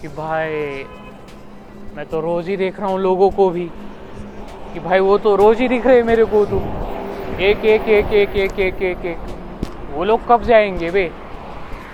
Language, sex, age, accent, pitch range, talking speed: Marathi, male, 20-39, native, 170-205 Hz, 50 wpm